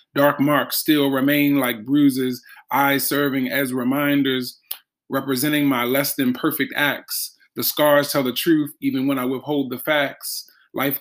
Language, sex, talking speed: English, male, 155 wpm